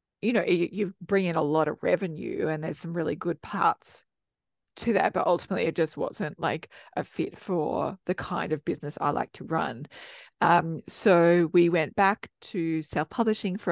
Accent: Australian